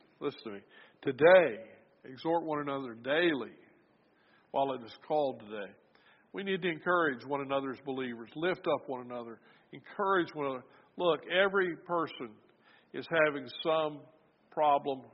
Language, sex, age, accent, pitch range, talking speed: English, male, 50-69, American, 125-155 Hz, 135 wpm